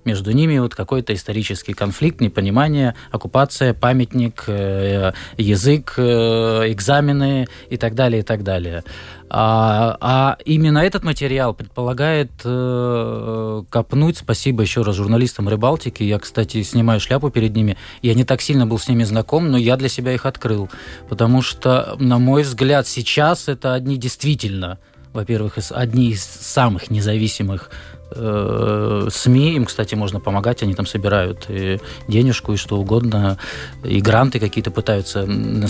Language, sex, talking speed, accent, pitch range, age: Russian, male, 135 wpm, native, 105-130 Hz, 20-39